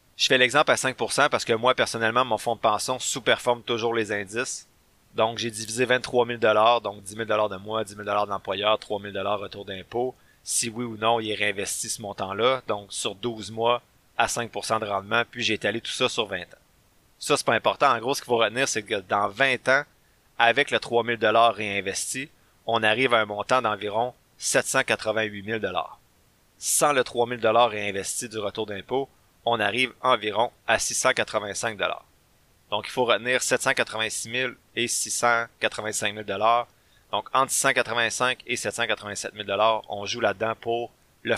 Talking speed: 175 wpm